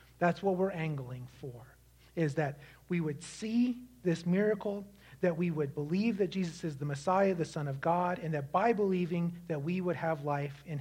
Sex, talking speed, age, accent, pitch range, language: male, 195 wpm, 40-59, American, 130-185 Hz, English